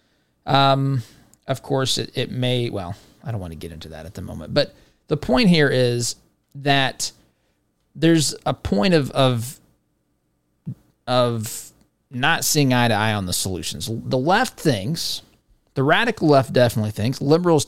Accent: American